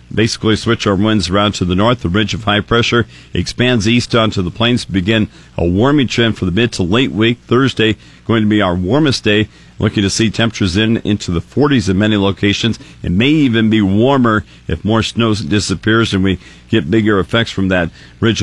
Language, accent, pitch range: English, American, 95-115 Hz